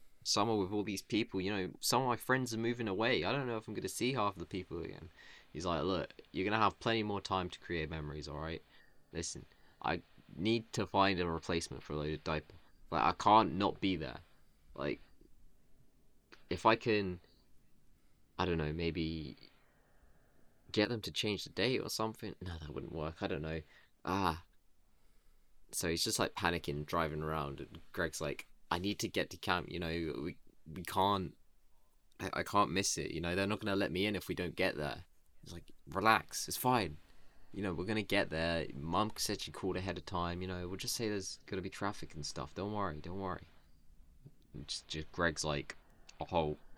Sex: male